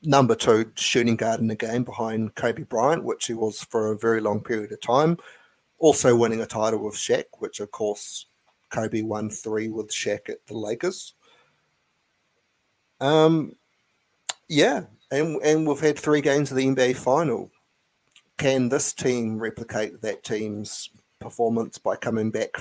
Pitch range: 110-135 Hz